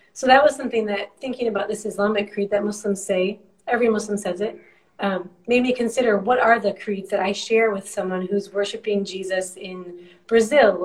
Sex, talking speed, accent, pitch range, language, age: female, 195 wpm, American, 190-230 Hz, English, 30-49